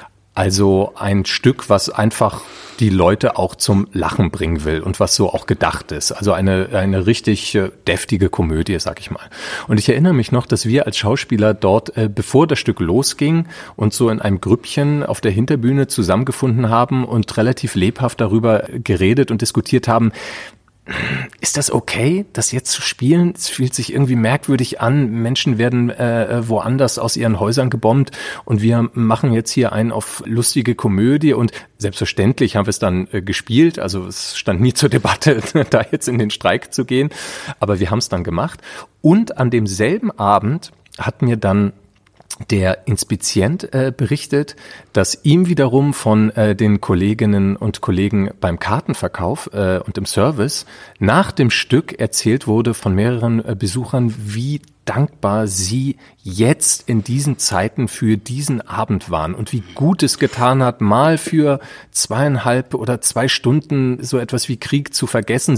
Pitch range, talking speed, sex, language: 105-135 Hz, 165 wpm, male, German